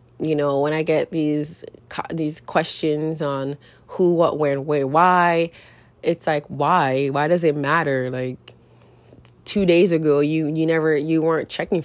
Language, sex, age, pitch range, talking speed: English, female, 20-39, 140-165 Hz, 155 wpm